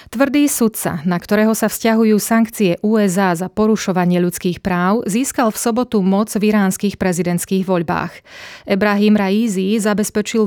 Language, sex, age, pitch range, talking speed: Slovak, female, 30-49, 180-215 Hz, 130 wpm